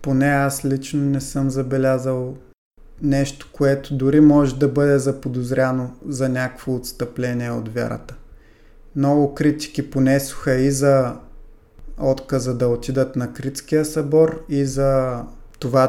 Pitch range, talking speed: 130-145 Hz, 120 wpm